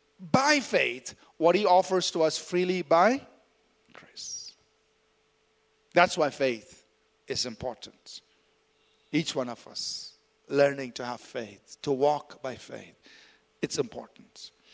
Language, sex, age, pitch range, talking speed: English, male, 50-69, 165-215 Hz, 120 wpm